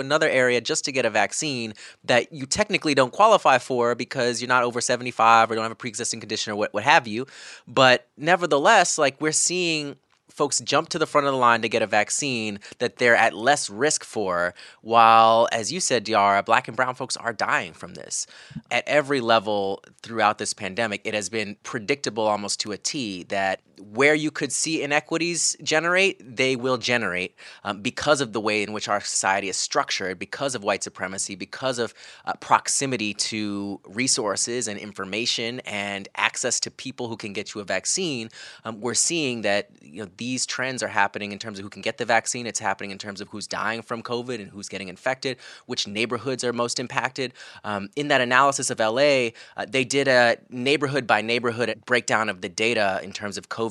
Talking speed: 200 wpm